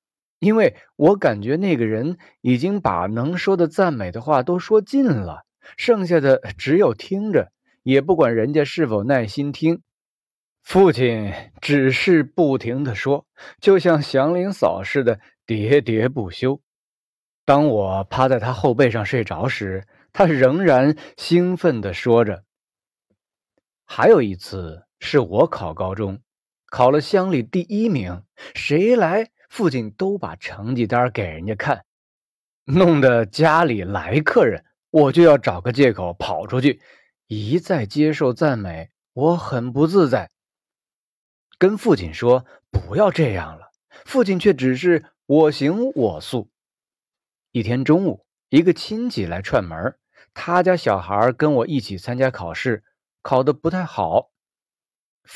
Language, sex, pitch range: Chinese, male, 115-170 Hz